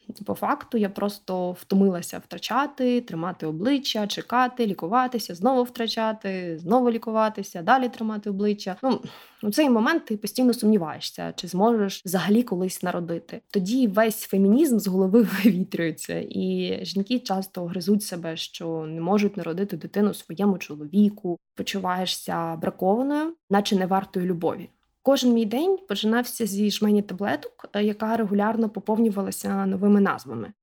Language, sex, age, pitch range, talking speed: Ukrainian, female, 20-39, 190-230 Hz, 125 wpm